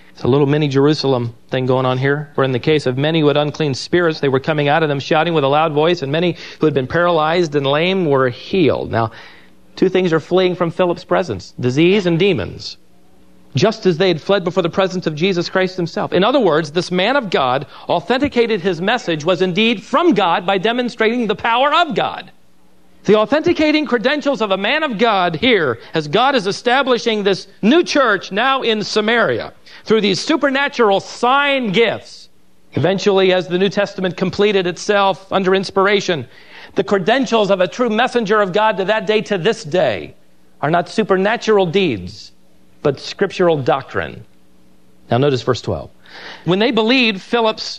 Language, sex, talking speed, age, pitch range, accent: English, male, 180 wpm, 40-59, 155-225 Hz, American